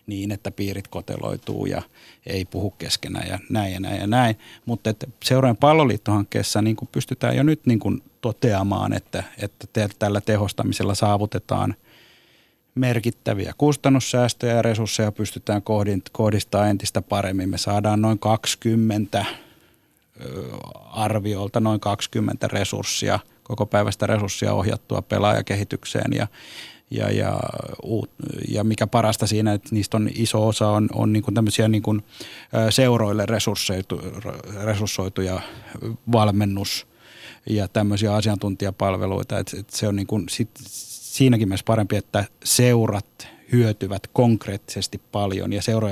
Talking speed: 110 wpm